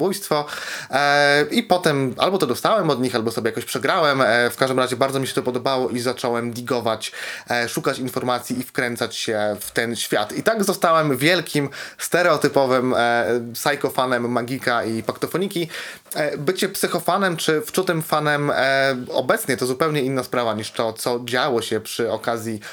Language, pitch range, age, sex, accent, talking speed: Polish, 120-155 Hz, 20-39, male, native, 150 wpm